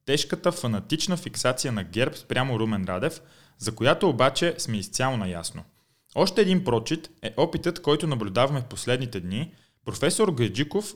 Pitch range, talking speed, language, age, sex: 110-160 Hz, 140 wpm, Bulgarian, 20-39, male